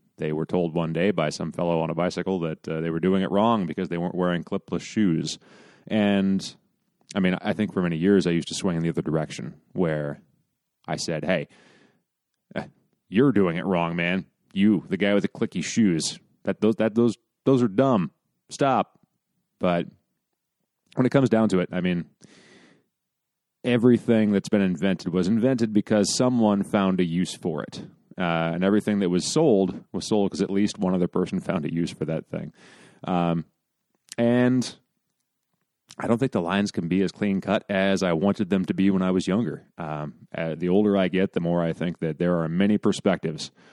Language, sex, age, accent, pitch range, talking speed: English, male, 30-49, American, 85-100 Hz, 195 wpm